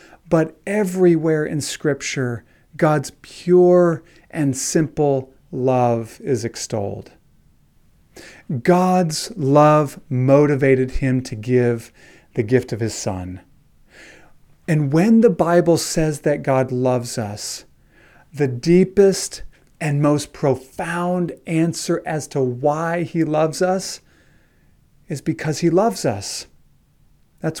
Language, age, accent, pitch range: English, 40-59, American, 130-165 Hz